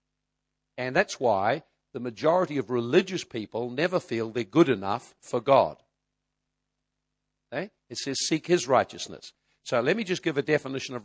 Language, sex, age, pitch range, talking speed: English, male, 60-79, 120-155 Hz, 150 wpm